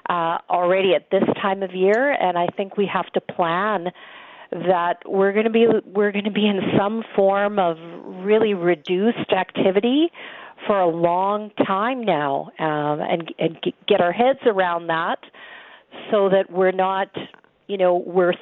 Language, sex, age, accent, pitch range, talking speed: English, female, 40-59, American, 180-210 Hz, 150 wpm